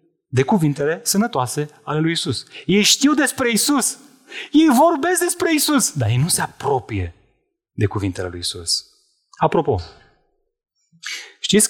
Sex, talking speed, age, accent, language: male, 130 wpm, 30-49, native, Romanian